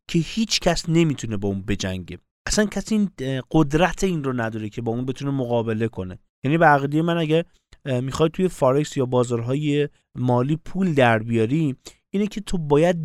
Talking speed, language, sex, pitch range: 165 wpm, Persian, male, 125-175 Hz